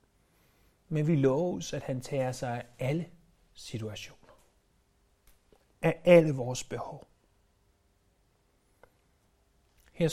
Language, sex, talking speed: Danish, male, 90 wpm